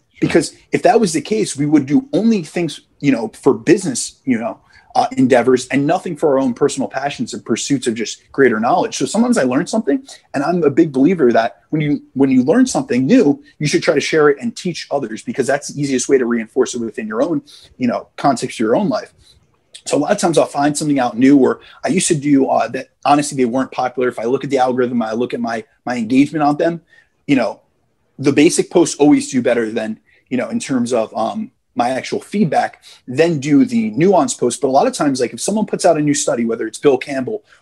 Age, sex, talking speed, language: 30-49, male, 240 wpm, English